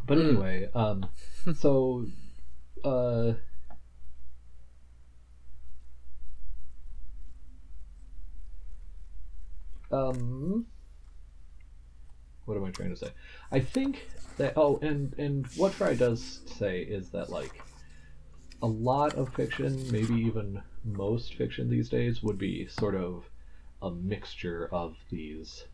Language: English